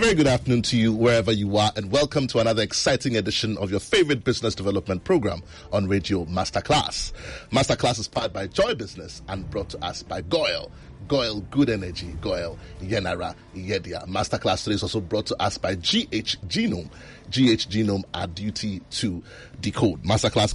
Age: 30-49